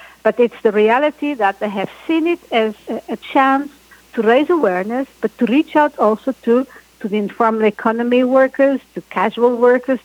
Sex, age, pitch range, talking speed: female, 60-79, 200-250 Hz, 175 wpm